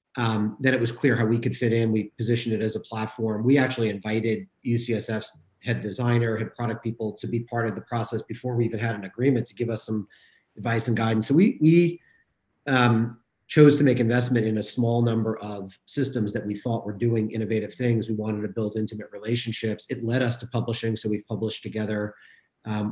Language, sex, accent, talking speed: English, male, American, 210 wpm